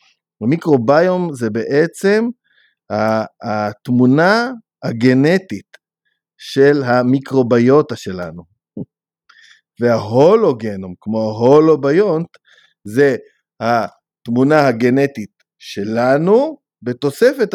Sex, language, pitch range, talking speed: male, Hebrew, 115-150 Hz, 55 wpm